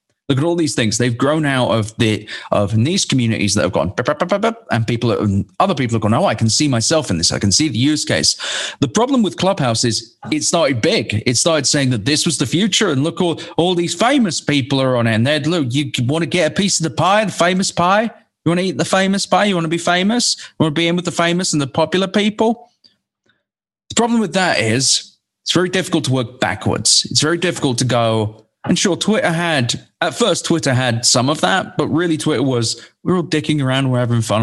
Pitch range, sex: 115-170 Hz, male